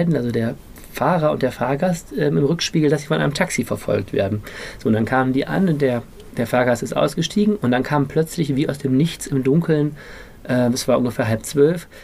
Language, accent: German, German